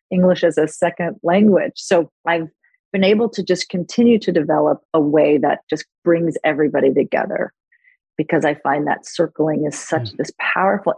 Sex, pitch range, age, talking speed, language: female, 150-185 Hz, 40-59, 165 wpm, English